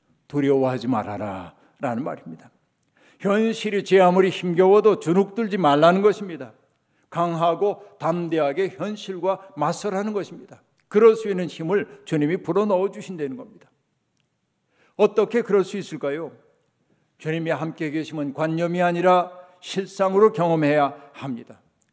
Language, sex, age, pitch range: Korean, male, 60-79, 155-195 Hz